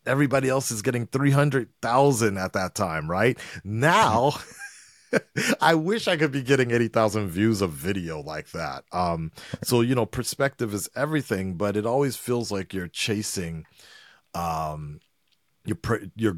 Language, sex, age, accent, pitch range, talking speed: English, male, 30-49, American, 85-115 Hz, 145 wpm